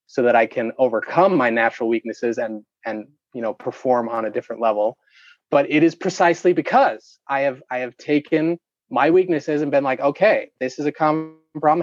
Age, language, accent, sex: 30-49, English, American, male